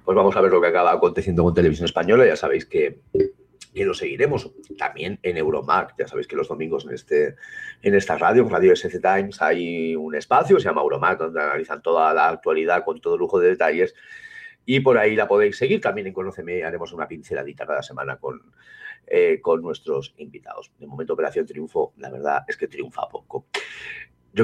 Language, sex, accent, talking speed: Spanish, male, Spanish, 195 wpm